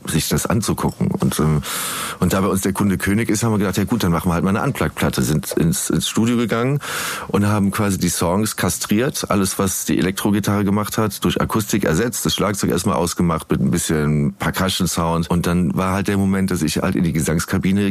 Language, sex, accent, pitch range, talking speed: German, male, German, 80-100 Hz, 220 wpm